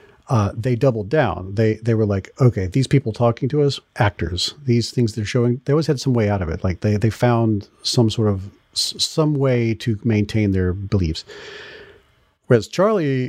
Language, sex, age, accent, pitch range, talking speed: English, male, 40-59, American, 100-125 Hz, 190 wpm